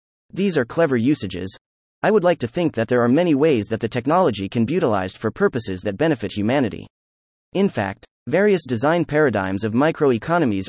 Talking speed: 180 wpm